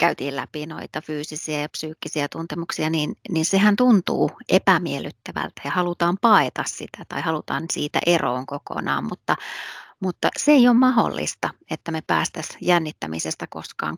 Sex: female